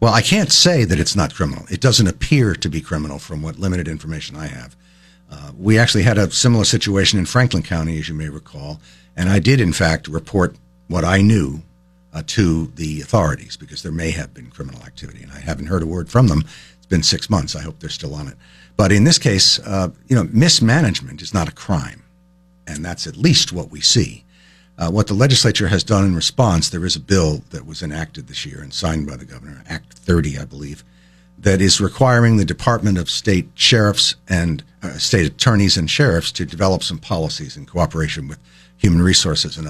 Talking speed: 215 wpm